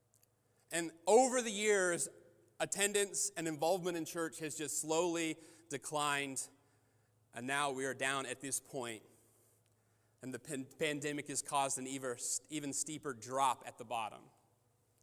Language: English